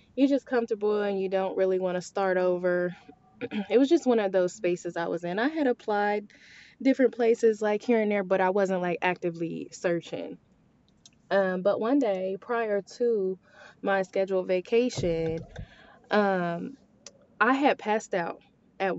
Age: 20-39